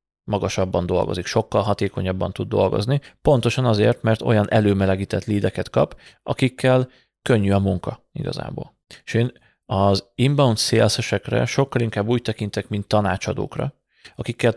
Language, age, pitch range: Hungarian, 30-49, 100-120 Hz